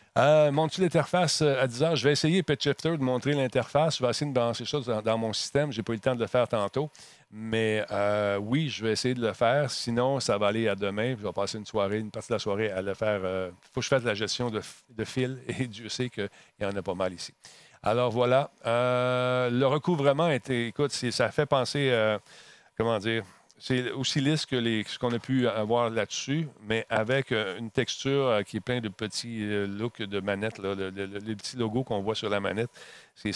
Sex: male